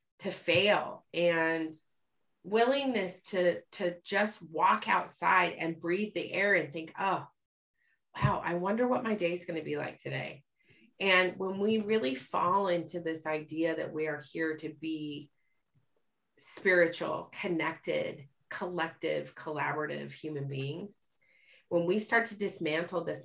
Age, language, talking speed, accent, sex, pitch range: 30-49, English, 135 wpm, American, female, 140-175 Hz